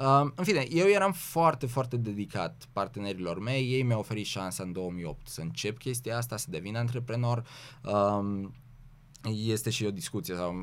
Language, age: Romanian, 20-39